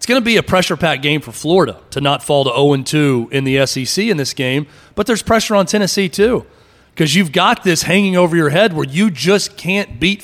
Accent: American